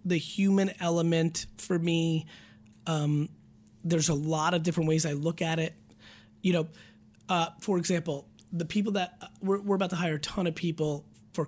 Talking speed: 185 wpm